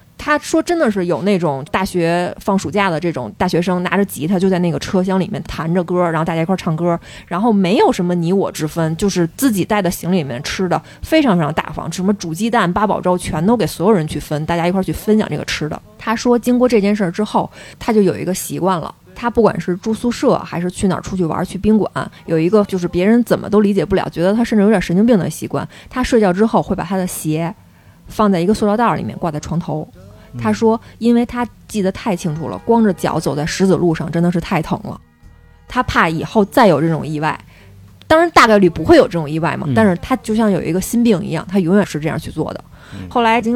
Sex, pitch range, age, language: female, 170-220 Hz, 20-39, Chinese